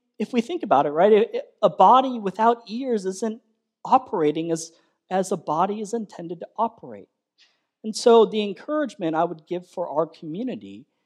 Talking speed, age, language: 165 wpm, 40-59, English